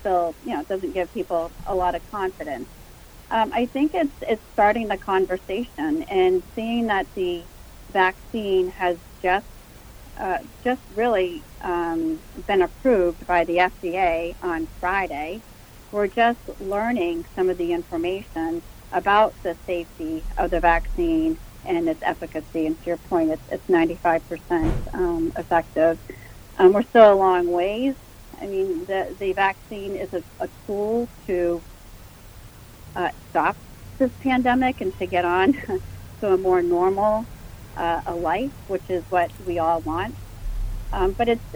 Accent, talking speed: American, 150 wpm